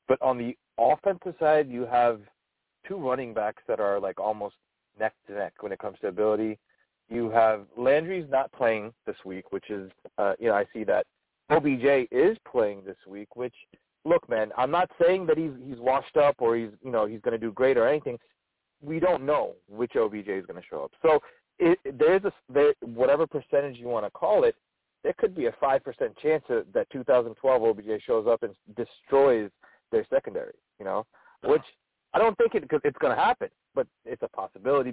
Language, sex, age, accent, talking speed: English, male, 30-49, American, 205 wpm